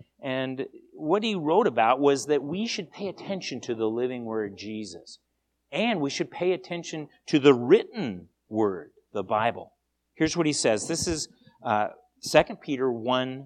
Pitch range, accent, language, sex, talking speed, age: 90-145 Hz, American, English, male, 160 wpm, 50-69